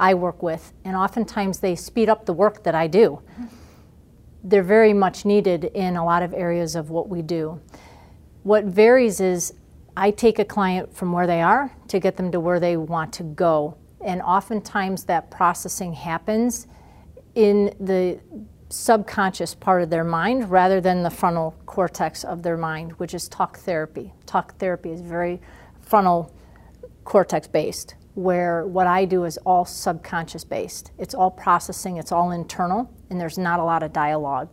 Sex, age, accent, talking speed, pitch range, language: female, 40-59, American, 170 wpm, 170-205 Hz, English